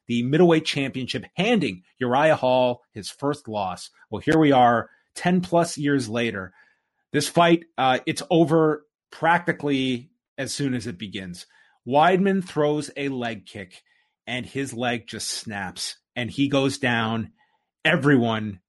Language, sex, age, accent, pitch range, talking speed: English, male, 30-49, American, 115-145 Hz, 140 wpm